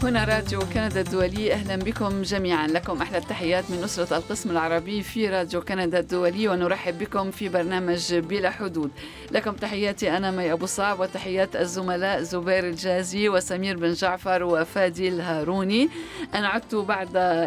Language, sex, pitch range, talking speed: Arabic, female, 175-210 Hz, 145 wpm